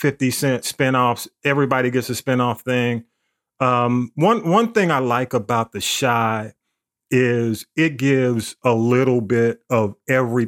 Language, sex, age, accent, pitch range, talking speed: English, male, 40-59, American, 120-150 Hz, 145 wpm